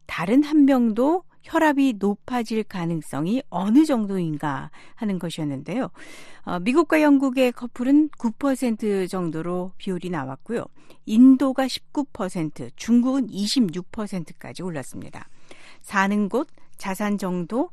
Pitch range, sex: 180-245 Hz, female